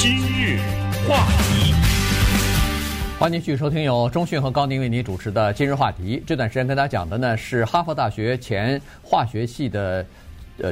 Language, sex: Chinese, male